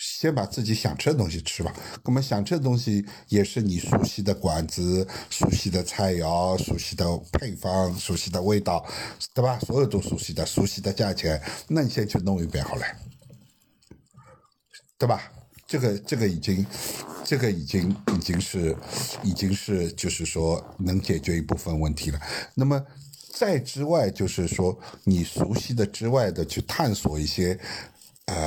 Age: 60-79